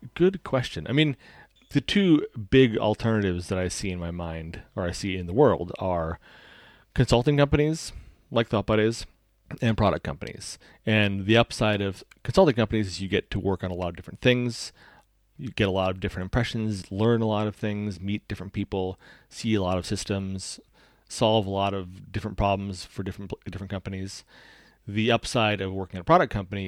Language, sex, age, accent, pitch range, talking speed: English, male, 30-49, American, 95-110 Hz, 185 wpm